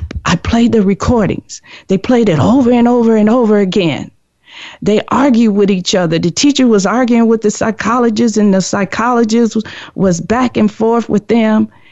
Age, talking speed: 50-69, 170 wpm